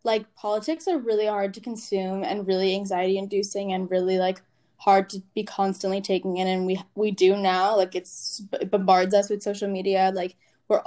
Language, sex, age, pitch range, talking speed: English, female, 10-29, 195-235 Hz, 190 wpm